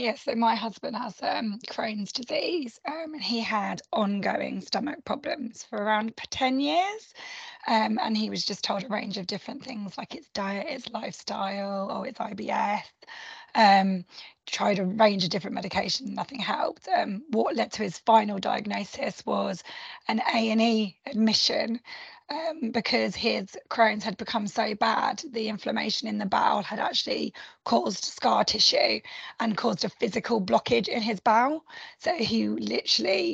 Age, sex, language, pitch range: 20-39, female, English, 205-245 Hz